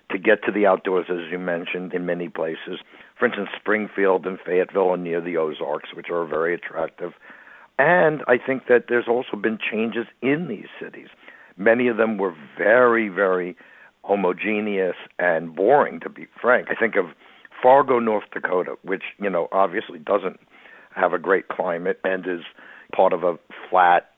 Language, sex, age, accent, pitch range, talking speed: English, male, 60-79, American, 95-110 Hz, 170 wpm